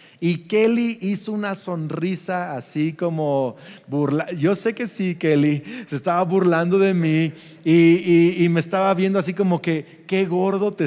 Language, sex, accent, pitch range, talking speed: Spanish, male, Mexican, 165-215 Hz, 165 wpm